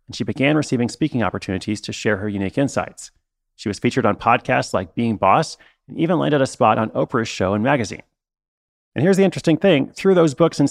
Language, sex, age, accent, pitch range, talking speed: English, male, 30-49, American, 110-150 Hz, 215 wpm